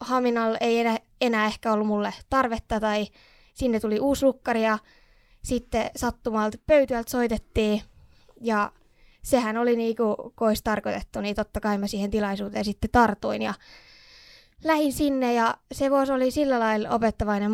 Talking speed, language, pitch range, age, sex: 145 wpm, Finnish, 210-245 Hz, 20-39, female